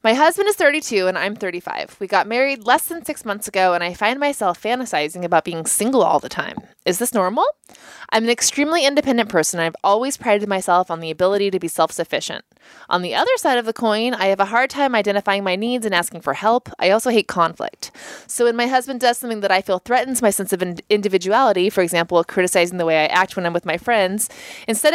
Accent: American